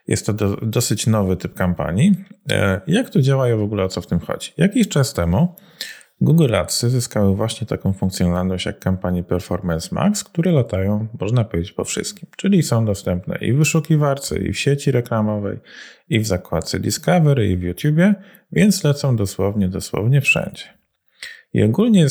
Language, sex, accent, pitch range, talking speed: Polish, male, native, 95-150 Hz, 165 wpm